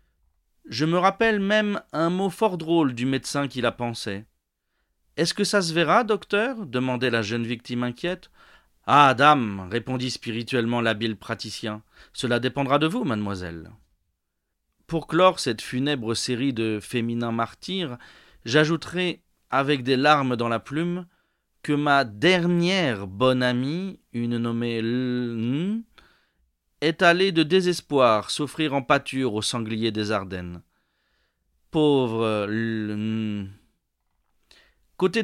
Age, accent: 40-59, French